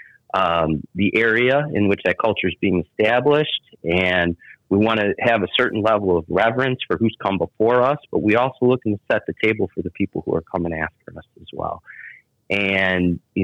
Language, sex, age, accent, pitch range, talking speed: English, male, 30-49, American, 95-125 Hz, 200 wpm